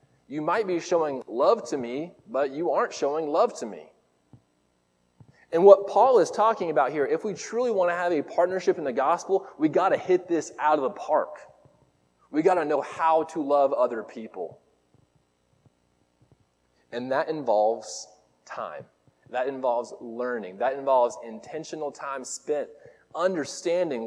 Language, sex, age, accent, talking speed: English, male, 20-39, American, 155 wpm